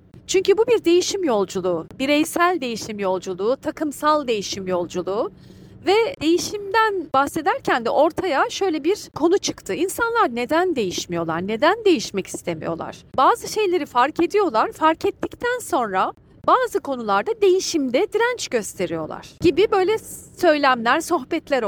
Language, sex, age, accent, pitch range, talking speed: Turkish, female, 40-59, native, 220-355 Hz, 115 wpm